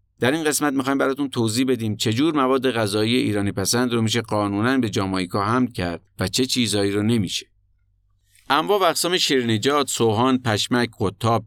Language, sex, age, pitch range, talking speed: Persian, male, 50-69, 95-125 Hz, 160 wpm